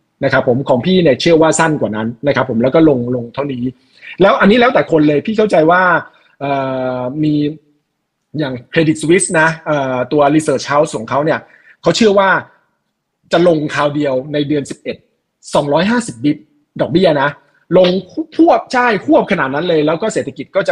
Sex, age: male, 20-39